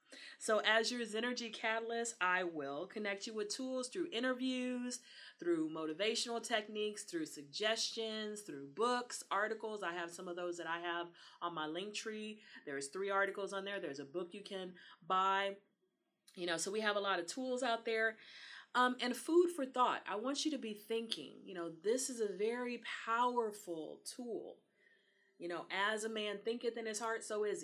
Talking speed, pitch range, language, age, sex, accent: 185 wpm, 185-245 Hz, English, 30-49, female, American